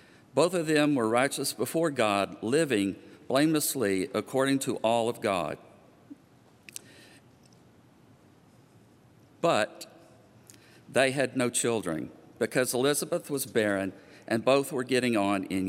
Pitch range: 110-140 Hz